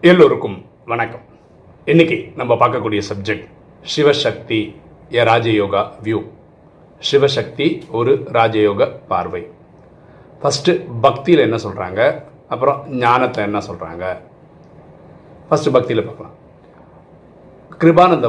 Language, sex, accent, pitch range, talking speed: Tamil, male, native, 110-150 Hz, 85 wpm